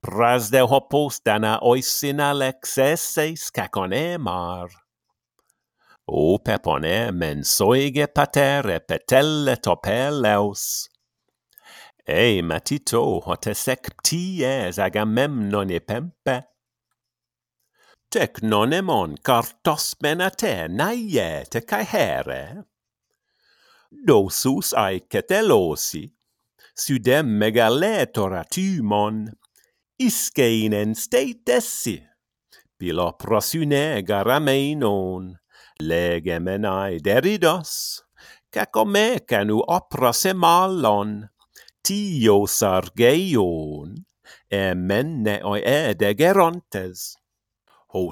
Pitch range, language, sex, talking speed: 100-165 Hz, English, male, 65 wpm